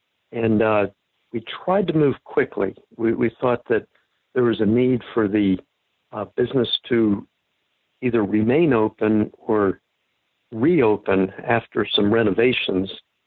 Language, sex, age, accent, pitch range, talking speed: English, male, 60-79, American, 105-125 Hz, 125 wpm